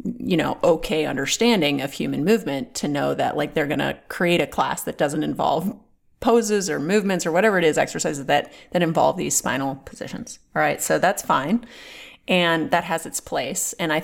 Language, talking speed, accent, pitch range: English, 195 wpm, American, 160-235 Hz